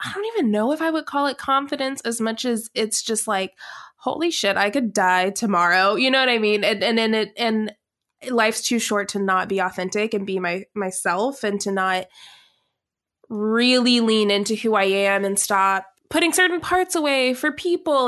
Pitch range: 195-240 Hz